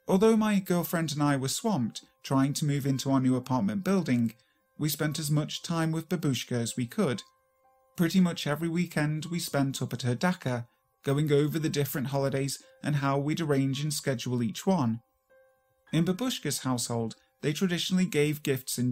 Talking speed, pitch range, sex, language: 180 wpm, 130-175 Hz, male, English